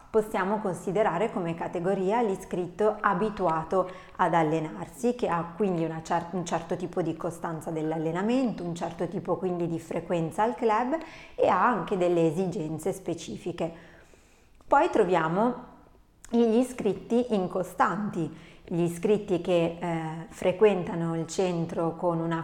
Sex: female